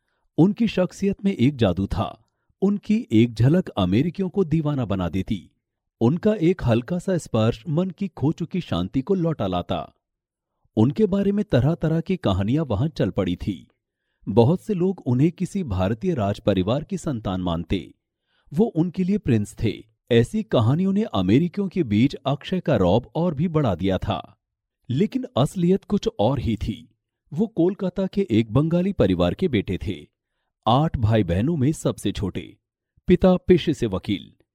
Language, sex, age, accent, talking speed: Hindi, male, 40-59, native, 160 wpm